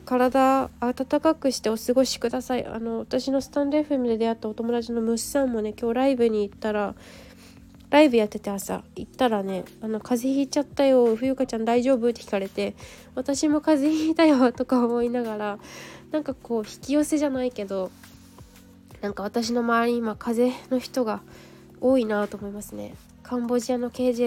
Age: 20-39